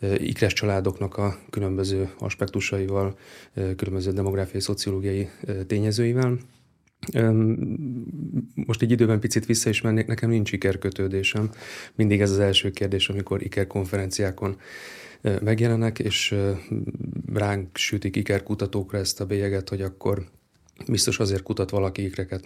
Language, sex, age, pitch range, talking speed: Hungarian, male, 30-49, 95-110 Hz, 110 wpm